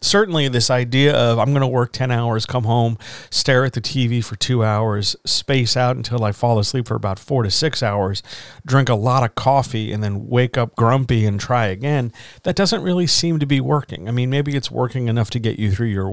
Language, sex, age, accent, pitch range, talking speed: English, male, 40-59, American, 110-135 Hz, 230 wpm